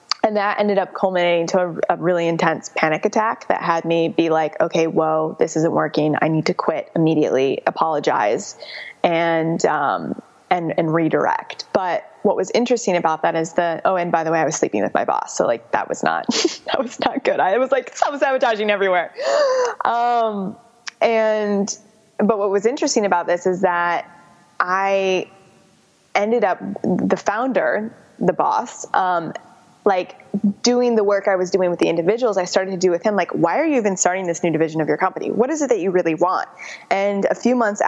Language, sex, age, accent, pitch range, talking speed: English, female, 20-39, American, 170-210 Hz, 200 wpm